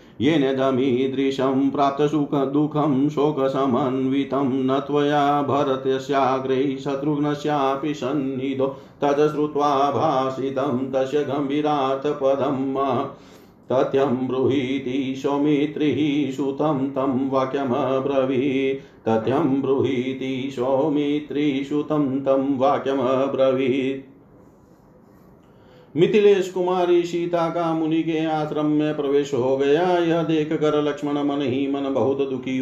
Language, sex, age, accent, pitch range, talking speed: Hindi, male, 50-69, native, 135-150 Hz, 90 wpm